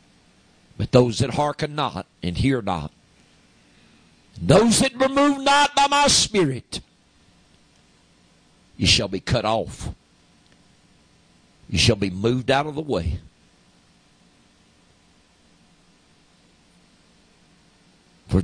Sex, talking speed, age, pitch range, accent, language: male, 95 wpm, 50-69, 95-125 Hz, American, English